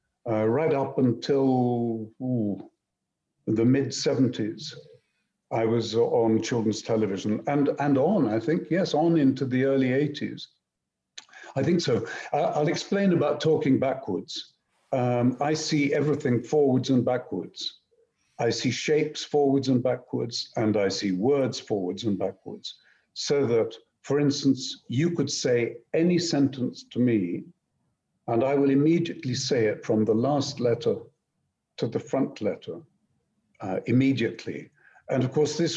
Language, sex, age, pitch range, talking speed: English, male, 60-79, 115-150 Hz, 140 wpm